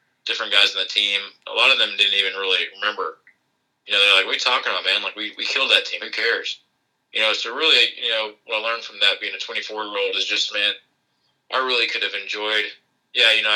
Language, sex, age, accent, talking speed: English, male, 20-39, American, 250 wpm